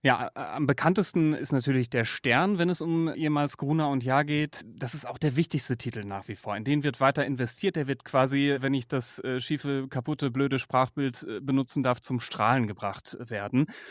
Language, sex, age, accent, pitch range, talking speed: German, male, 30-49, German, 125-155 Hz, 195 wpm